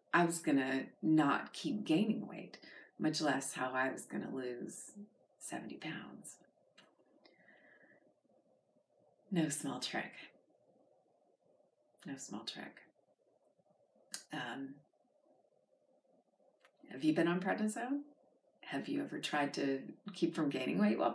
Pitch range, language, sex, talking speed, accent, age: 145-205 Hz, English, female, 110 wpm, American, 30-49